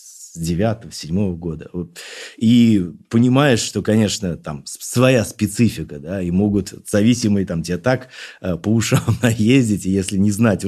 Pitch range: 90-120 Hz